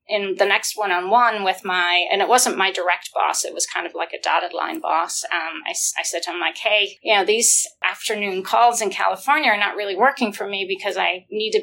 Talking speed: 235 wpm